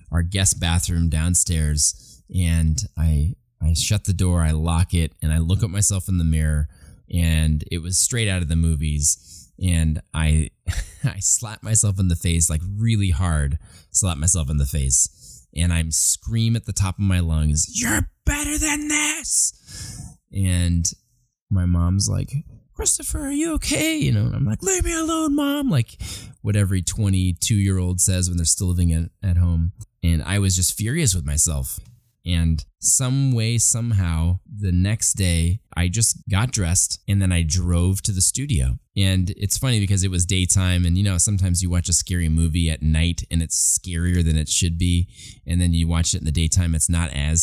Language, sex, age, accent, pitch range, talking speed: English, male, 20-39, American, 85-105 Hz, 190 wpm